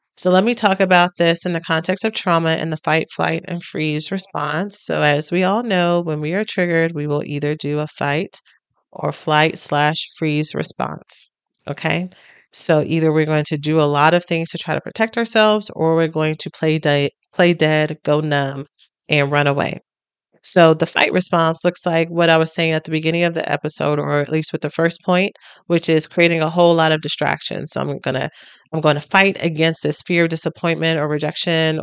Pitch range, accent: 150-175 Hz, American